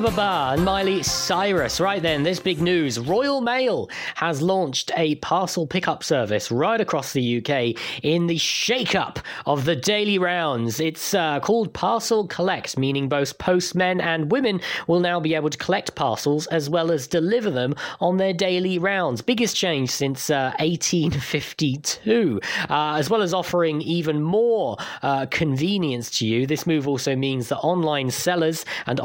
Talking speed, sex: 160 wpm, male